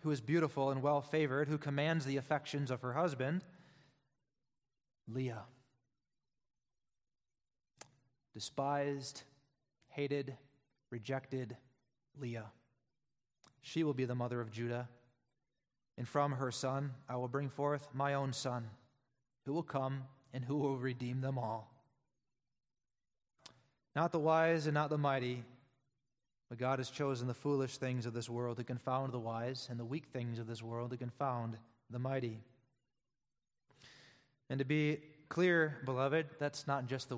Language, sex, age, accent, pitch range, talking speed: English, male, 20-39, American, 125-140 Hz, 135 wpm